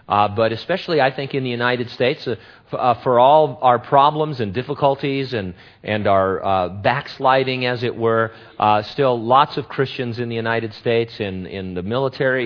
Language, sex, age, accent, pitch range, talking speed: English, male, 40-59, American, 105-130 Hz, 190 wpm